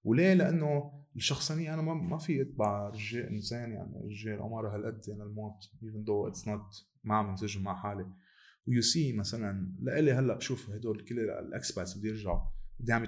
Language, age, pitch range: Arabic, 20-39, 100-125 Hz